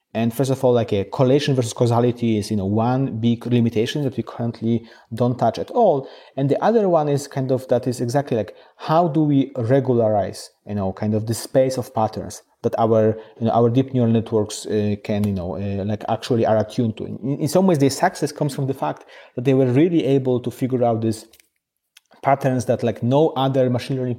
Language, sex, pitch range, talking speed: English, male, 115-140 Hz, 220 wpm